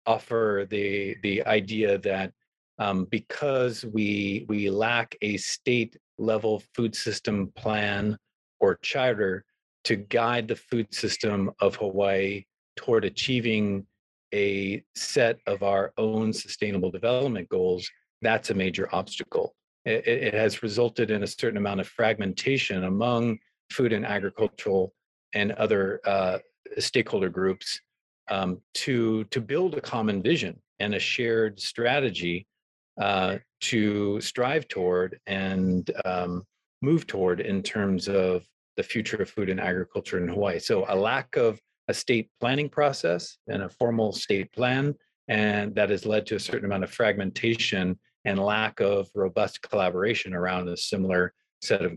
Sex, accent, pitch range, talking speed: male, American, 95-115 Hz, 140 wpm